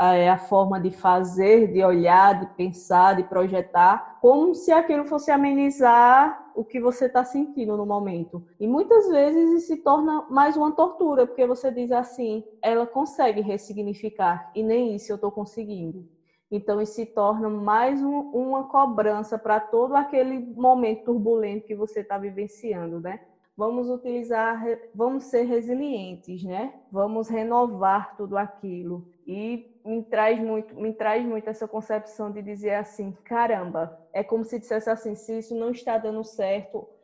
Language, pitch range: Portuguese, 195-240 Hz